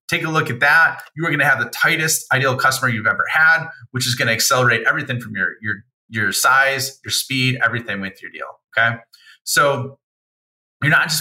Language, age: English, 30-49